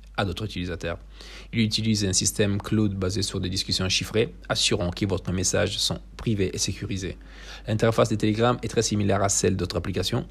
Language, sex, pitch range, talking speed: Italian, male, 90-110 Hz, 175 wpm